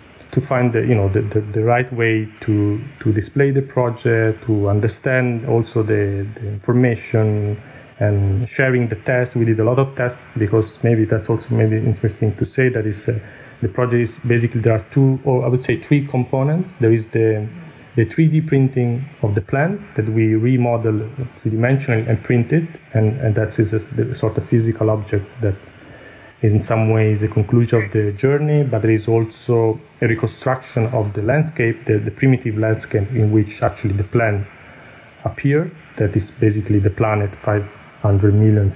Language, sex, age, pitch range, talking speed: English, male, 30-49, 110-130 Hz, 180 wpm